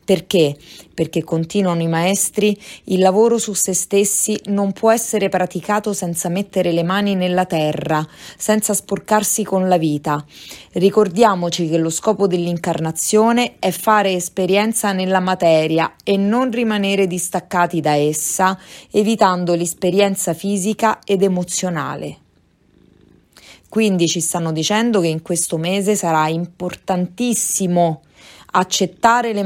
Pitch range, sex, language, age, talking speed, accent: 170-210 Hz, female, Italian, 30-49, 120 wpm, native